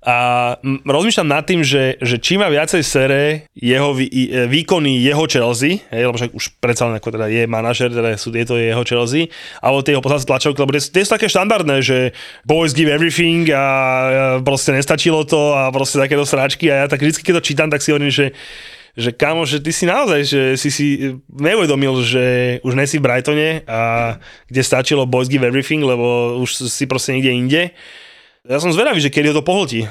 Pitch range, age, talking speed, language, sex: 120-150 Hz, 20-39, 195 wpm, Slovak, male